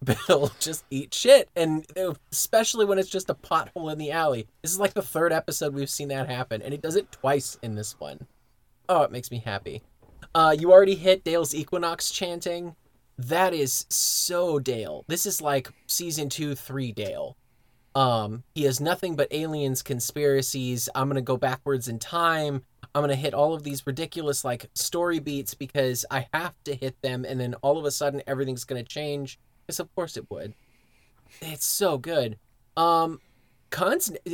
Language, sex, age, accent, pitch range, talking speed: English, male, 20-39, American, 125-170 Hz, 180 wpm